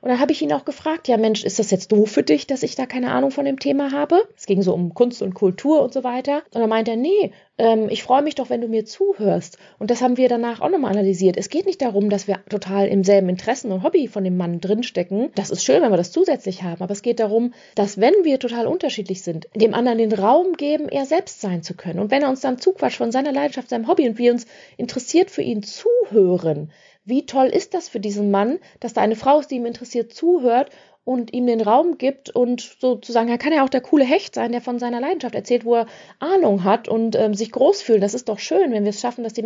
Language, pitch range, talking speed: German, 200-270 Hz, 260 wpm